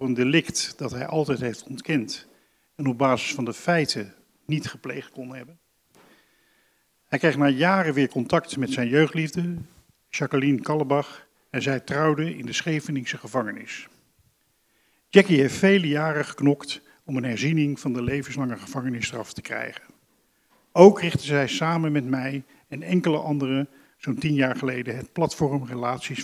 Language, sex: Dutch, male